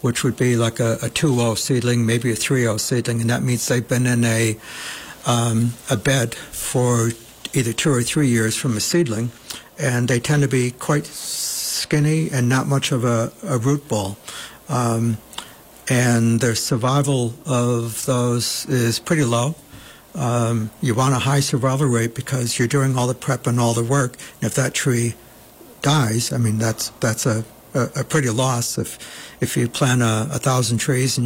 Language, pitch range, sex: English, 115-135 Hz, male